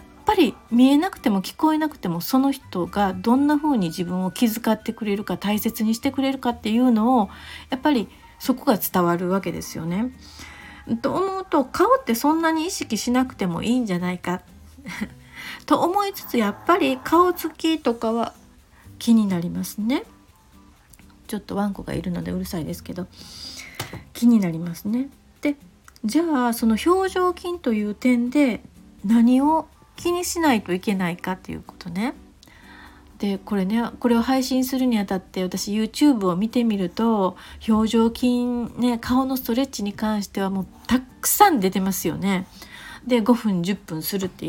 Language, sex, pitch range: Japanese, female, 195-265 Hz